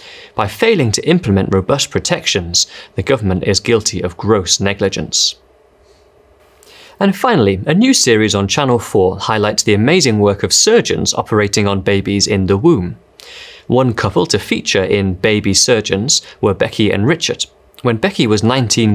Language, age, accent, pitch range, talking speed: English, 30-49, British, 100-120 Hz, 150 wpm